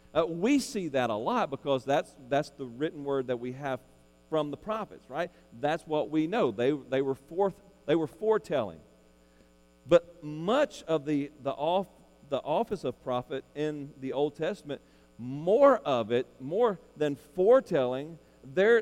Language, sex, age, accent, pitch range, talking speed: English, male, 50-69, American, 135-210 Hz, 165 wpm